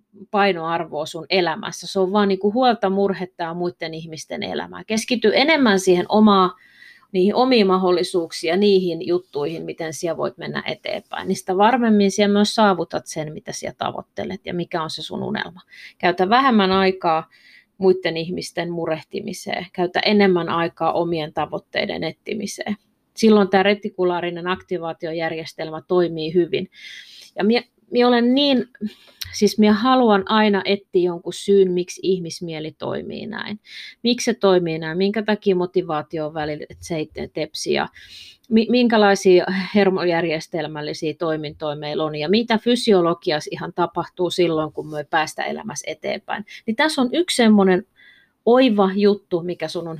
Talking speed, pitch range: 135 wpm, 170-210 Hz